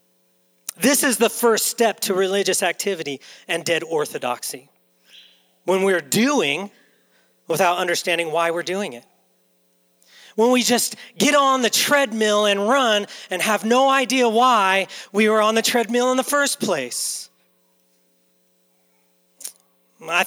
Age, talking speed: 40-59, 130 wpm